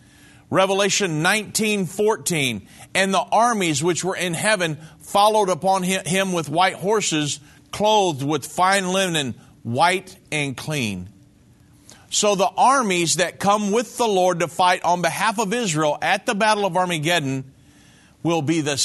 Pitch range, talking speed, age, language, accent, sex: 130-190 Hz, 140 wpm, 50-69, English, American, male